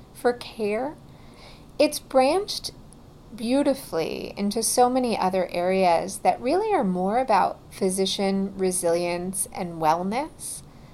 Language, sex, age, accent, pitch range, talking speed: English, female, 40-59, American, 175-215 Hz, 105 wpm